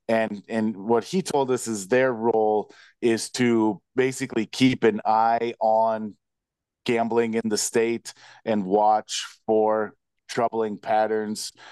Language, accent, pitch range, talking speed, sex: English, American, 105-120 Hz, 130 wpm, male